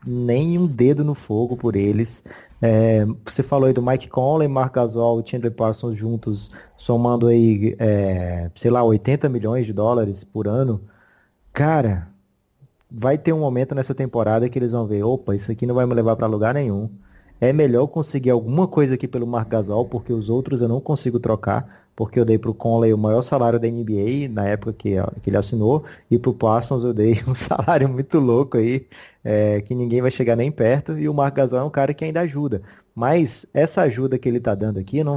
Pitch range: 110-135 Hz